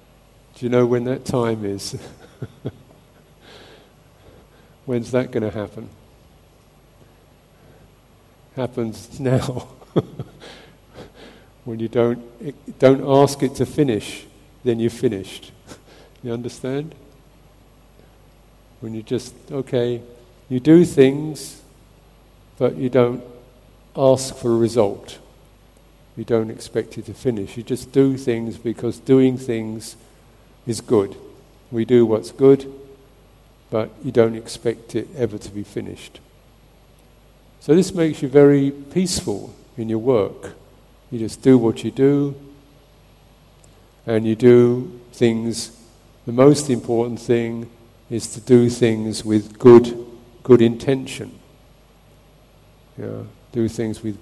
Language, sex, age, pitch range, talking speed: English, male, 50-69, 115-135 Hz, 115 wpm